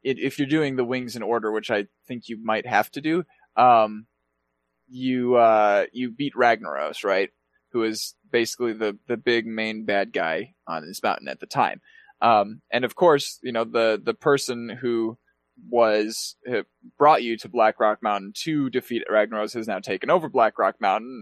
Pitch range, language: 110-130 Hz, English